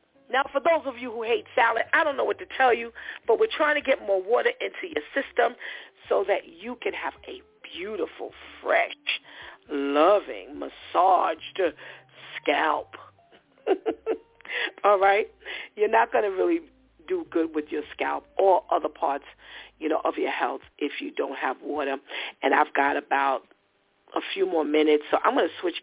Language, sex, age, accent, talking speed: English, female, 40-59, American, 170 wpm